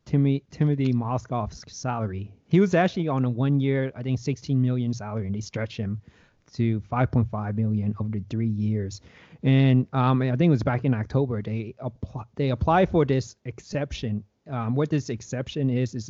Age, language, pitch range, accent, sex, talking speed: 20-39, English, 105-135 Hz, American, male, 185 wpm